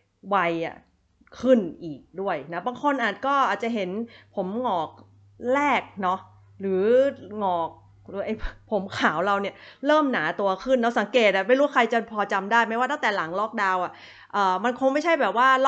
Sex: female